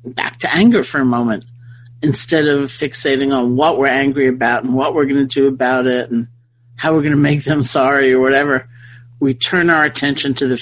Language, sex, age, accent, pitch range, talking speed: English, male, 50-69, American, 120-140 Hz, 215 wpm